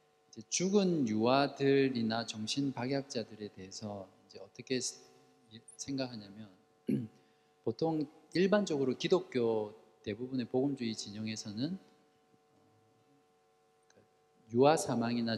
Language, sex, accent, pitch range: Korean, male, native, 110-150 Hz